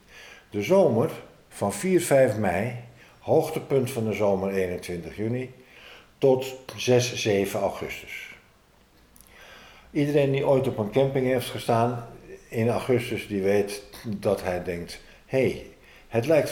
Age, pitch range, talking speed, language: 50-69, 95-125 Hz, 125 wpm, Dutch